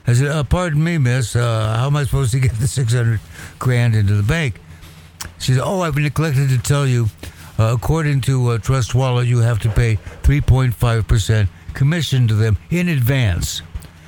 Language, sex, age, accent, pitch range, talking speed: English, male, 60-79, American, 90-135 Hz, 185 wpm